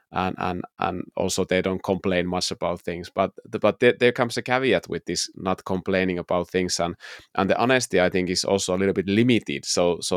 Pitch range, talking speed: 90-100 Hz, 225 wpm